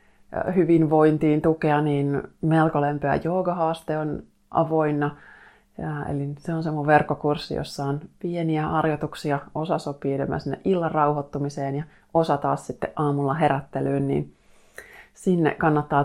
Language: Finnish